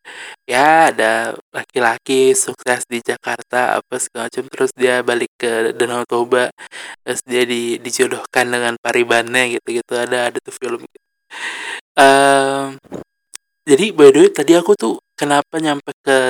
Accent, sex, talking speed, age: native, male, 135 wpm, 20-39